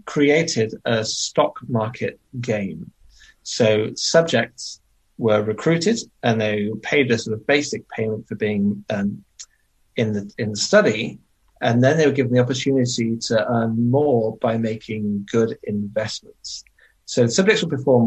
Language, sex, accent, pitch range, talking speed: English, male, British, 110-130 Hz, 145 wpm